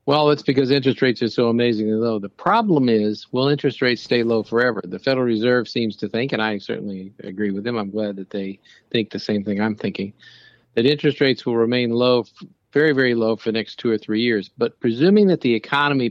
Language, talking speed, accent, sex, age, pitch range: English, 225 wpm, American, male, 50-69, 110-130 Hz